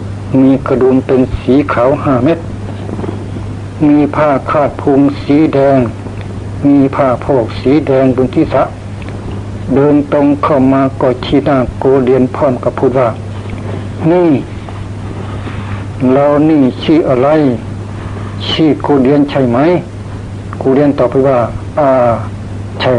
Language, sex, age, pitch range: Thai, male, 60-79, 100-135 Hz